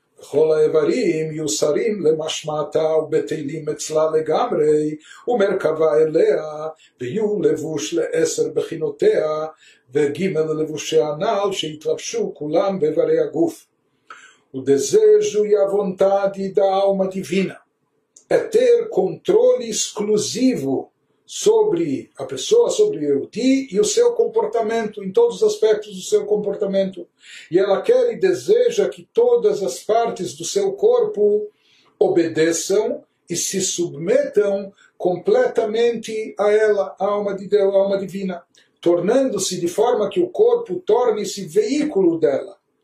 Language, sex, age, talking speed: Portuguese, male, 60-79, 115 wpm